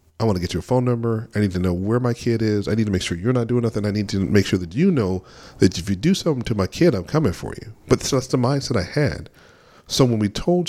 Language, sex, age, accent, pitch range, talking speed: English, male, 40-59, American, 90-115 Hz, 310 wpm